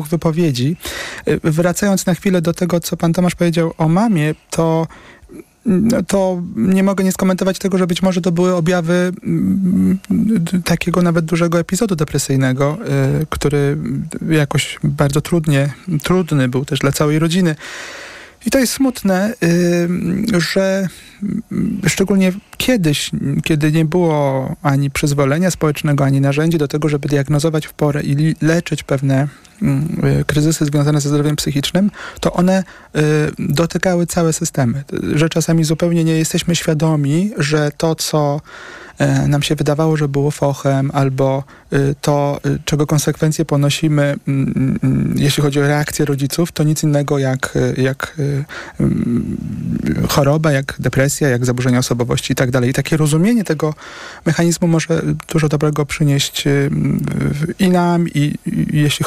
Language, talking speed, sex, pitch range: Polish, 135 wpm, male, 145-180 Hz